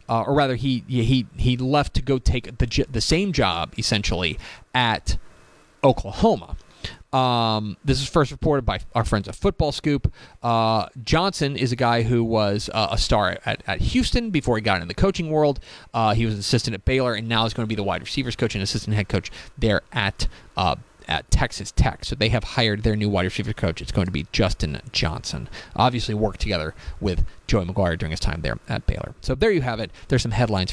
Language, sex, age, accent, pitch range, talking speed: English, male, 30-49, American, 105-135 Hz, 215 wpm